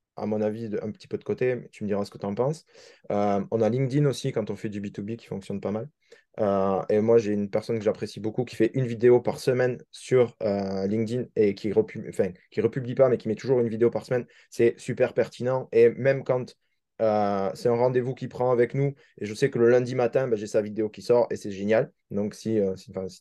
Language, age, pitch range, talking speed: French, 20-39, 110-150 Hz, 245 wpm